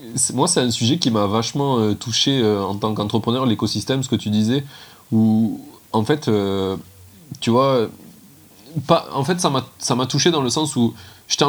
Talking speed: 185 wpm